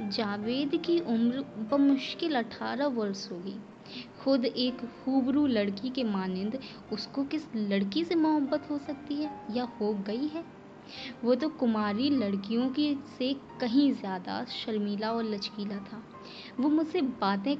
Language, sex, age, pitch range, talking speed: Hindi, female, 20-39, 215-280 Hz, 135 wpm